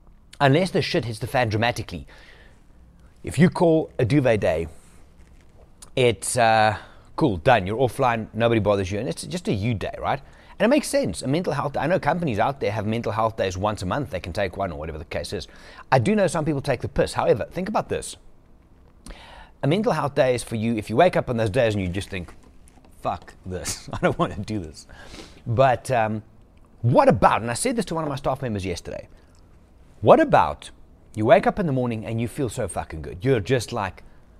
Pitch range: 90-135 Hz